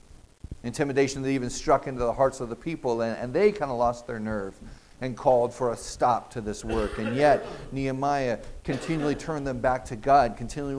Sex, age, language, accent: male, 40-59, English, American